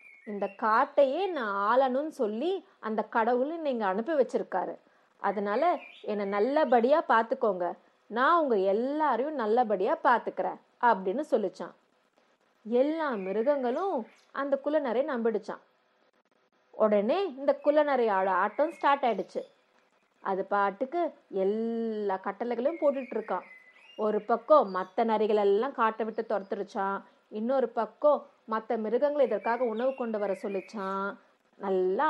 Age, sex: 30-49, female